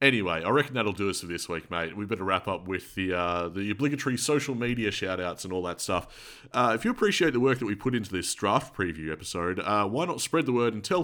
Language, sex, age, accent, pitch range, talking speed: English, male, 30-49, Australian, 90-120 Hz, 260 wpm